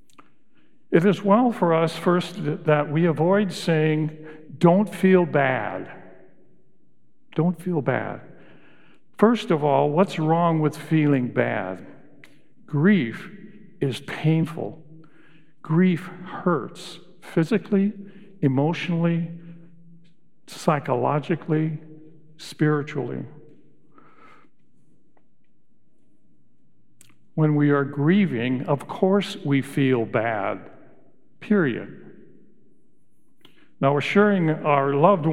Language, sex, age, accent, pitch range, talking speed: English, male, 50-69, American, 145-175 Hz, 80 wpm